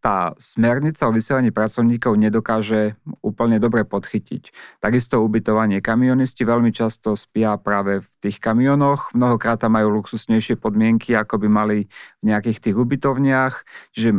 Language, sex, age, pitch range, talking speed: Slovak, male, 40-59, 110-130 Hz, 135 wpm